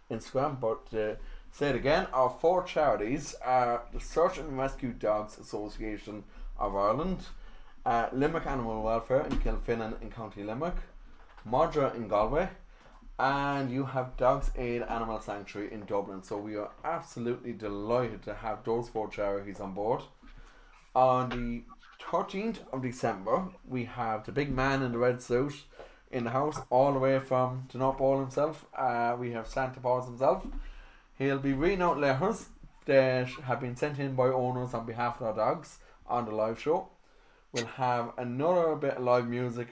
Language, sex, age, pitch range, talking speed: English, male, 20-39, 115-135 Hz, 165 wpm